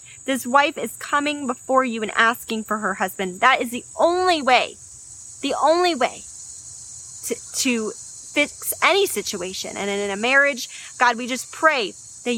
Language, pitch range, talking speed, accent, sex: English, 215-285 Hz, 165 wpm, American, female